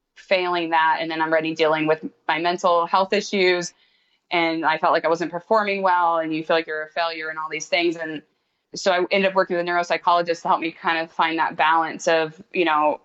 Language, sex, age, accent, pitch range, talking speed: English, female, 20-39, American, 155-185 Hz, 235 wpm